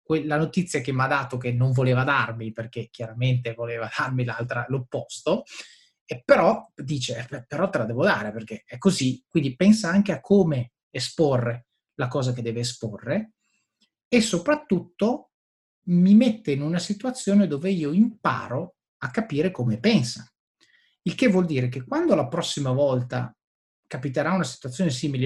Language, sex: Italian, male